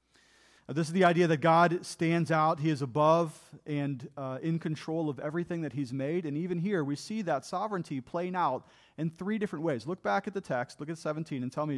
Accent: American